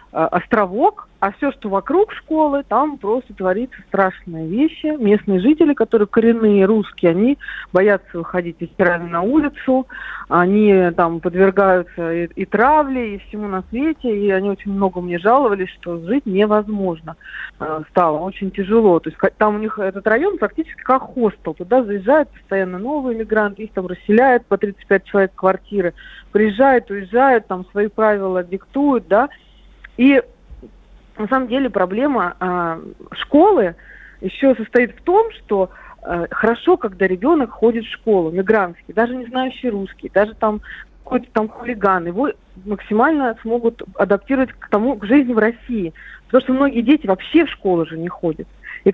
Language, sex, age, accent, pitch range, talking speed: Russian, female, 40-59, native, 190-255 Hz, 150 wpm